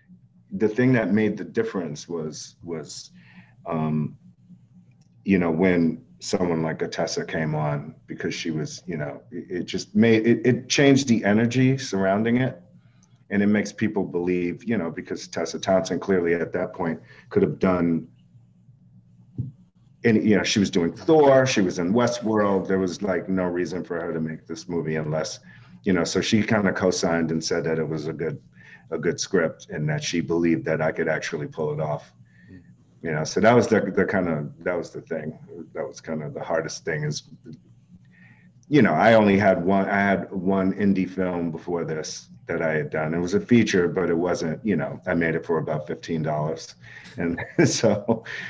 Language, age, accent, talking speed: English, 40-59, American, 195 wpm